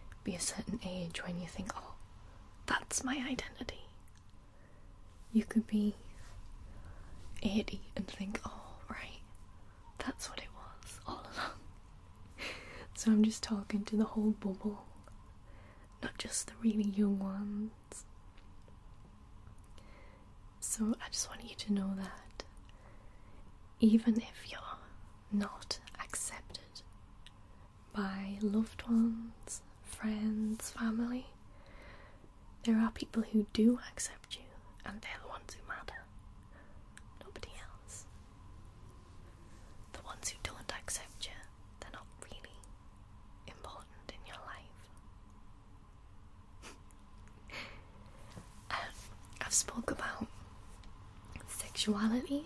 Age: 20-39